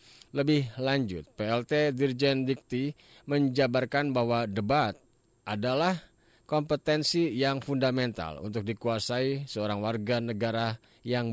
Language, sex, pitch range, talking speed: Indonesian, male, 110-145 Hz, 95 wpm